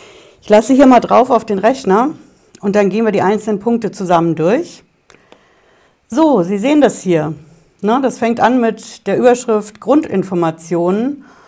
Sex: female